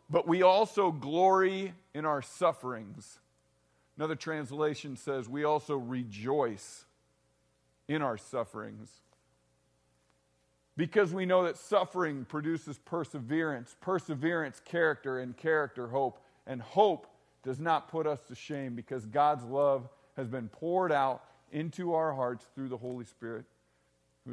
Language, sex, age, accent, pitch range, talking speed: English, male, 50-69, American, 120-170 Hz, 125 wpm